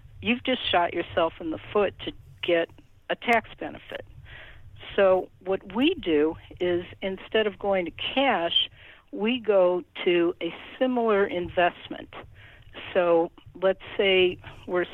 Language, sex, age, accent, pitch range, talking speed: English, female, 60-79, American, 170-210 Hz, 130 wpm